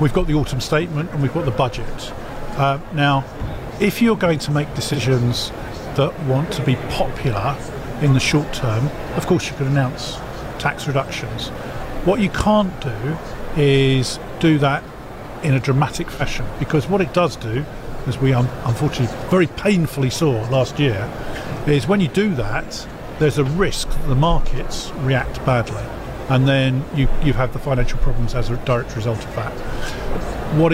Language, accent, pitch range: English, British, 125-150 Hz